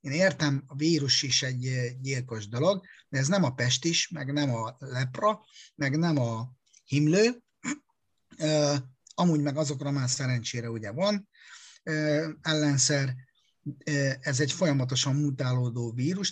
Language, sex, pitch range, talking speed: Hungarian, male, 120-155 Hz, 125 wpm